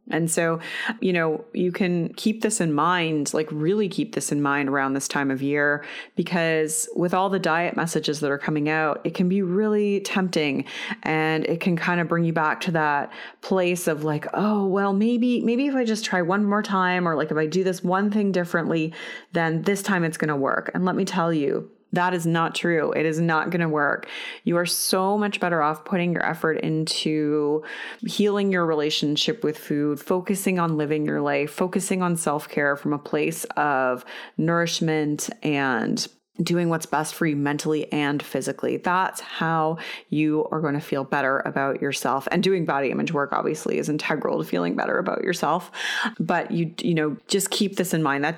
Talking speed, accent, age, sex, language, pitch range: 200 wpm, American, 30-49, female, English, 150-190 Hz